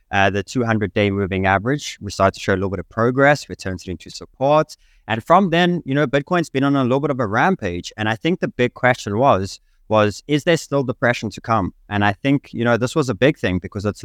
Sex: male